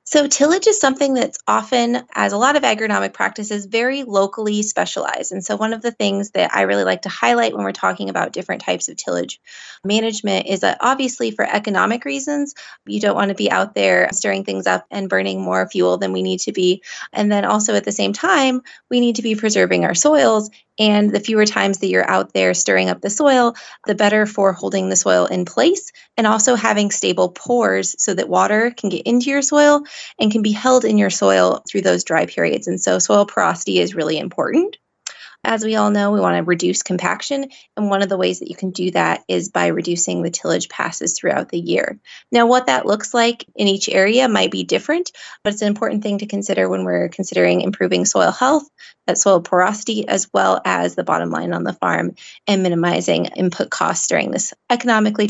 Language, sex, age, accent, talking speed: English, female, 20-39, American, 215 wpm